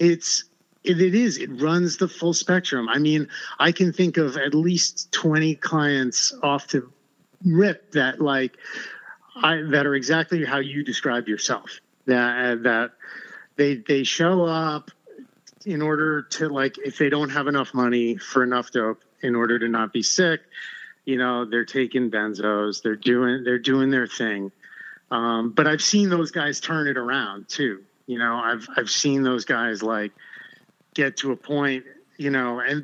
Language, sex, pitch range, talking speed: English, male, 125-165 Hz, 170 wpm